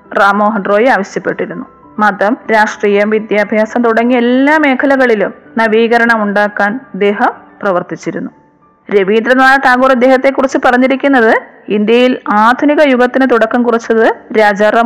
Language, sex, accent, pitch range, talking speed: Malayalam, female, native, 215-260 Hz, 100 wpm